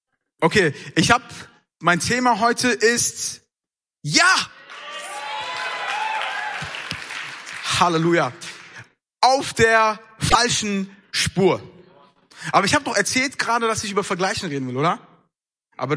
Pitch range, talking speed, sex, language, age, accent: 165-230 Hz, 100 wpm, male, German, 30-49, German